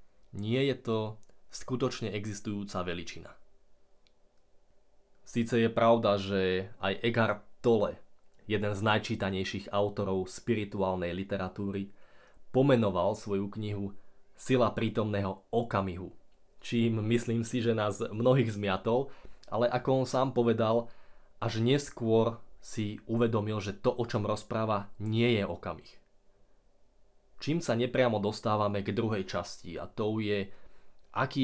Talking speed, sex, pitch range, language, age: 115 wpm, male, 100-120 Hz, Slovak, 20-39